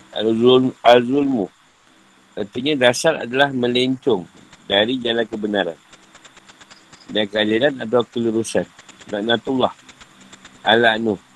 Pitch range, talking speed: 105-125 Hz, 75 wpm